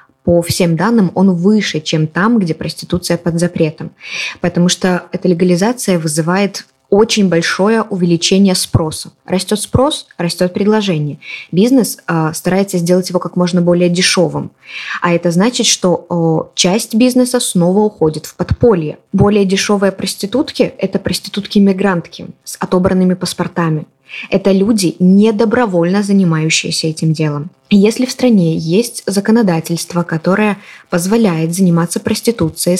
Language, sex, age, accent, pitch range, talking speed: Russian, female, 20-39, native, 175-205 Hz, 125 wpm